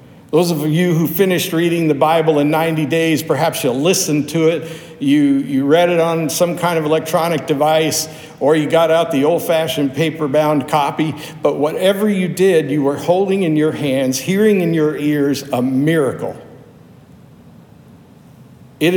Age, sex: 60-79, male